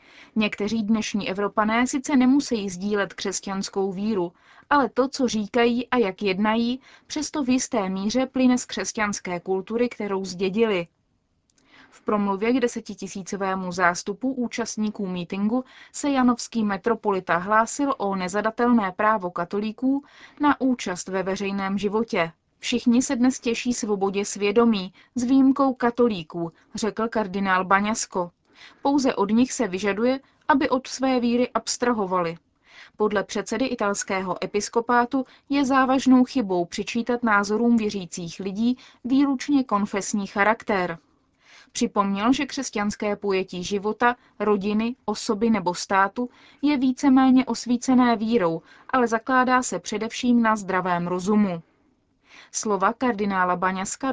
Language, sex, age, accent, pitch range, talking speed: Czech, female, 20-39, native, 200-250 Hz, 115 wpm